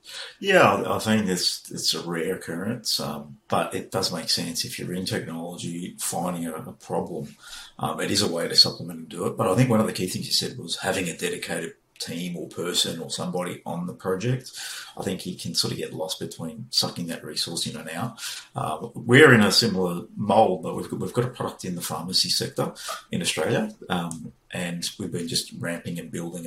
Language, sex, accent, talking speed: English, male, Australian, 220 wpm